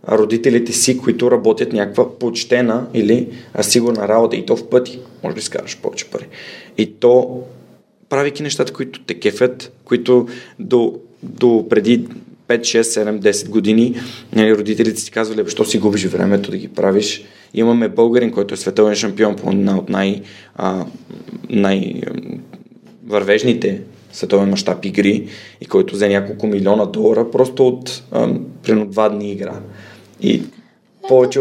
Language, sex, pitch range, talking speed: Bulgarian, male, 105-125 Hz, 140 wpm